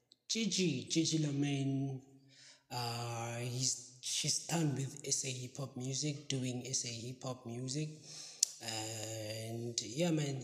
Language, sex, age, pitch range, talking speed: English, male, 20-39, 125-150 Hz, 115 wpm